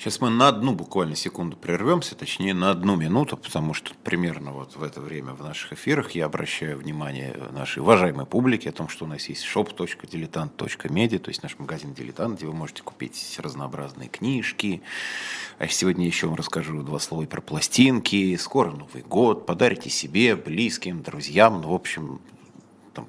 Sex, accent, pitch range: male, native, 75-100 Hz